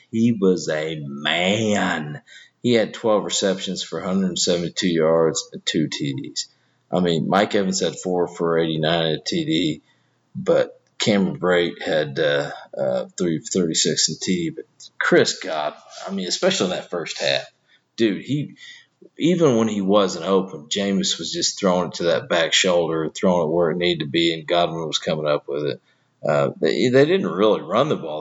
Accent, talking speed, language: American, 180 wpm, English